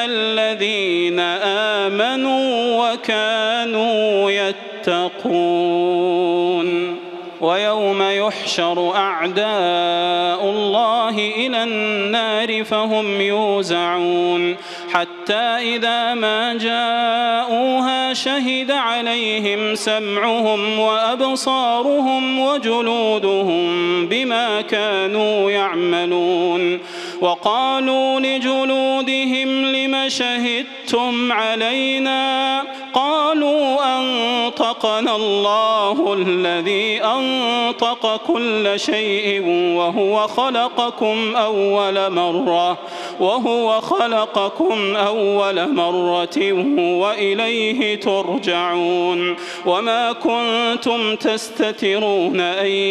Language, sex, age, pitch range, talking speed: Arabic, male, 30-49, 195-235 Hz, 55 wpm